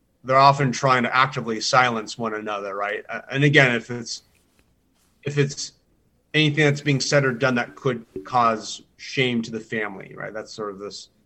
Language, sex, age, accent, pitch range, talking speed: English, male, 30-49, American, 115-145 Hz, 175 wpm